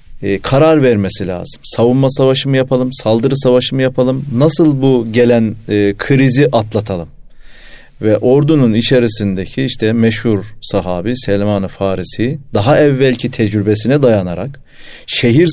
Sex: male